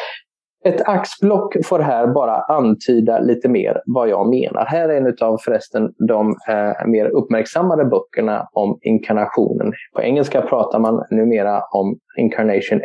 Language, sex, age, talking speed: English, male, 20-39, 140 wpm